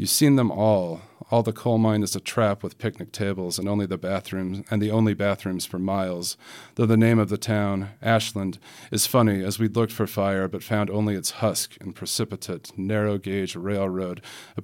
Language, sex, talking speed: English, male, 195 wpm